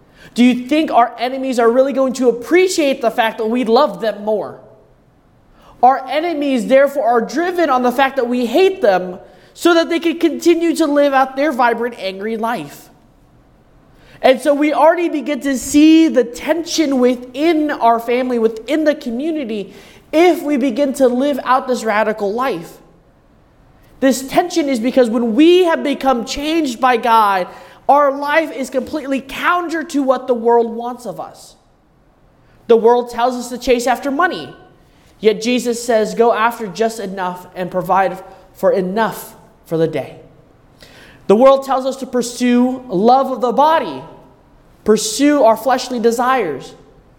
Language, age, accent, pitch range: English, 20-39, American, 230-290 Hz